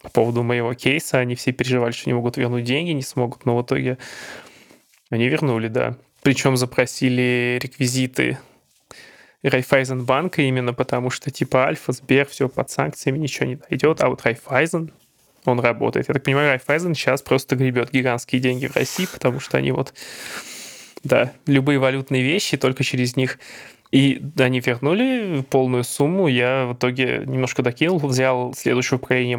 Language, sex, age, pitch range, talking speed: Russian, male, 20-39, 125-135 Hz, 155 wpm